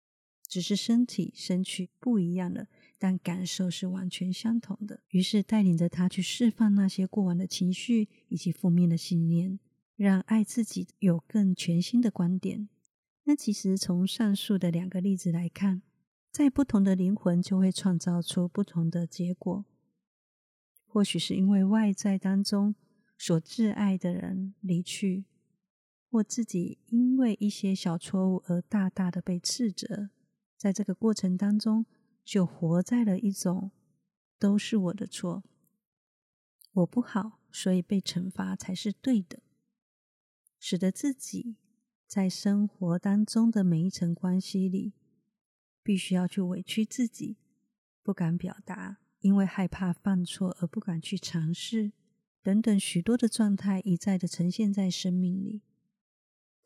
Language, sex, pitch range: Chinese, female, 180-210 Hz